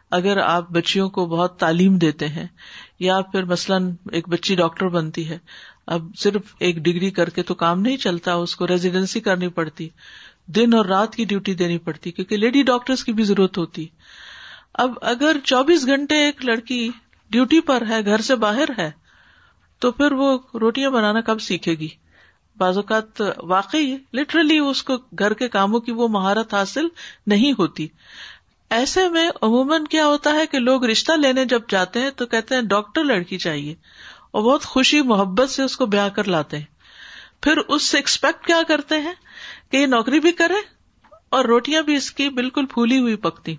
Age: 50-69